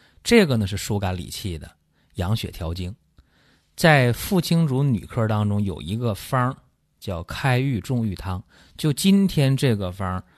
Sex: male